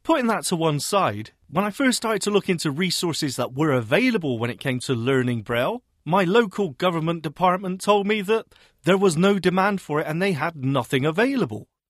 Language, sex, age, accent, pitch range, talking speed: English, male, 30-49, British, 140-210 Hz, 200 wpm